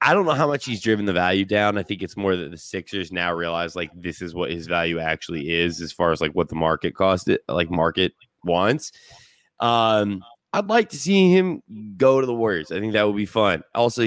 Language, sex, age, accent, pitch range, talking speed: English, male, 20-39, American, 95-125 Hz, 240 wpm